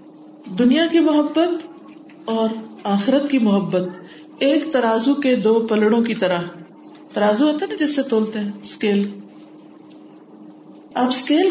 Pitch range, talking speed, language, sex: 220-300 Hz, 130 wpm, Urdu, female